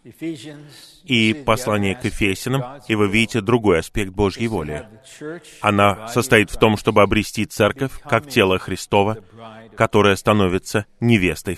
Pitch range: 105-130 Hz